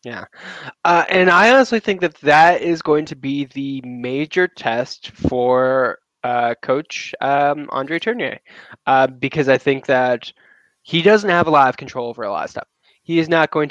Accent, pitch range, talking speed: American, 125-150 Hz, 185 wpm